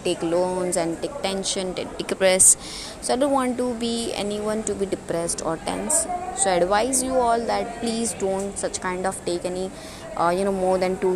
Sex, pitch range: female, 185-250 Hz